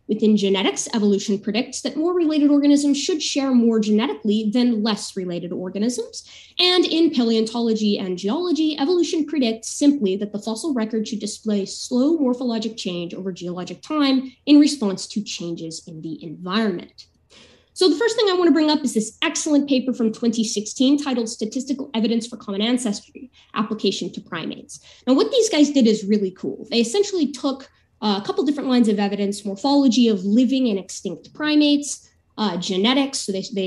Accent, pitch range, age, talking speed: American, 200-275 Hz, 20-39, 170 wpm